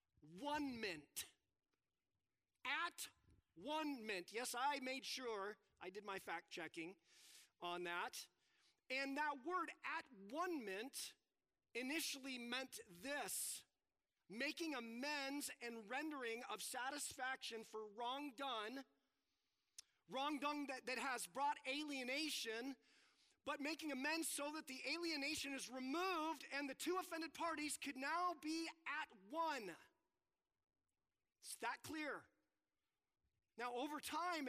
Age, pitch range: 30-49, 240-300 Hz